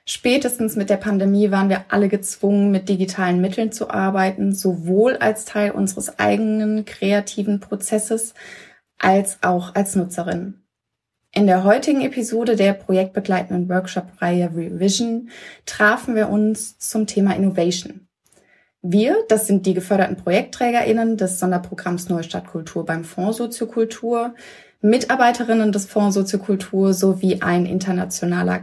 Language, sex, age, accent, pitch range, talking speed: German, female, 20-39, German, 185-220 Hz, 120 wpm